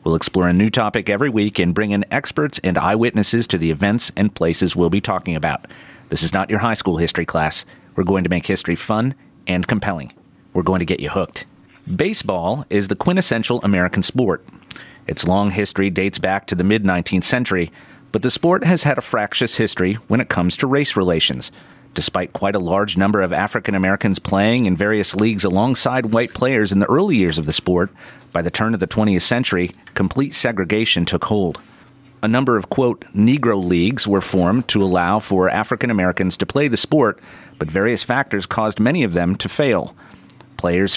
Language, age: English, 30-49